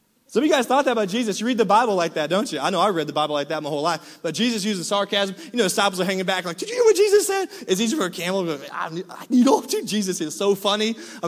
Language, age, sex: English, 20-39, male